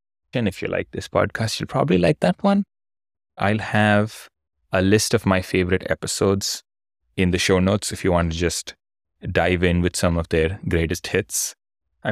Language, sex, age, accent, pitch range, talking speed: English, male, 20-39, Indian, 85-105 Hz, 180 wpm